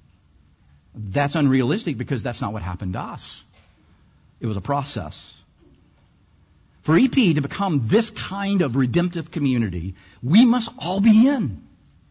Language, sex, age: English, male, 50-69